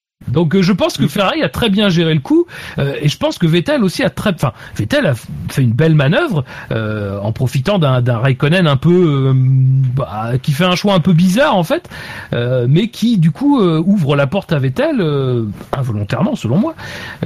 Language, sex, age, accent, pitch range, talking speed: French, male, 40-59, French, 125-170 Hz, 220 wpm